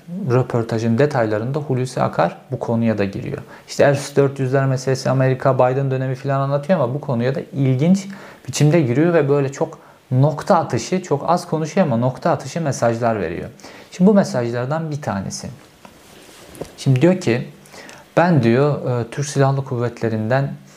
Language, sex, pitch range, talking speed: Turkish, male, 120-150 Hz, 140 wpm